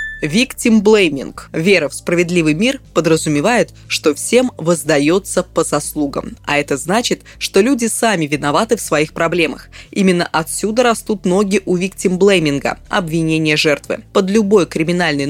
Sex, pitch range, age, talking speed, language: female, 160-215 Hz, 20-39, 130 wpm, Russian